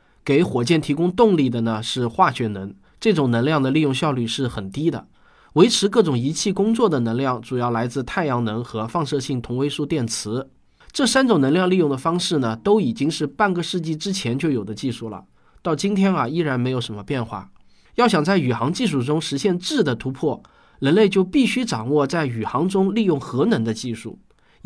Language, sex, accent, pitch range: Chinese, male, native, 125-190 Hz